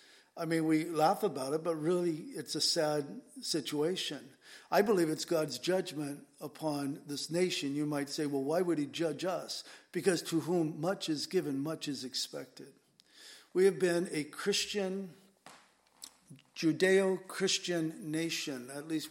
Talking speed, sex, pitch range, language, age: 150 wpm, male, 150-175 Hz, English, 50-69